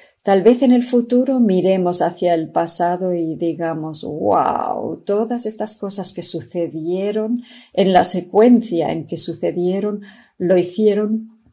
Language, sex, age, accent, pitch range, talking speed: English, female, 40-59, Spanish, 170-215 Hz, 130 wpm